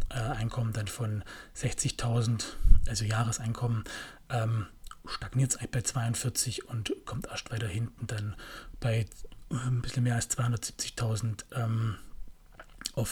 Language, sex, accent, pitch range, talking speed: German, male, German, 110-125 Hz, 125 wpm